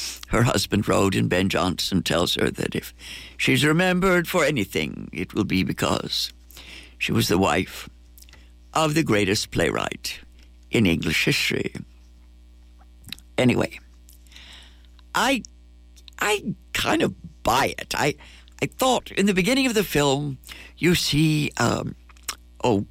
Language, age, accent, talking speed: English, 60-79, American, 130 wpm